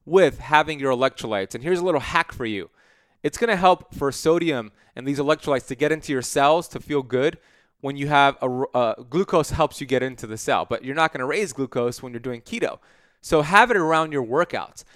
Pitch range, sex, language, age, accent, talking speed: 125-170 Hz, male, English, 20-39, American, 220 wpm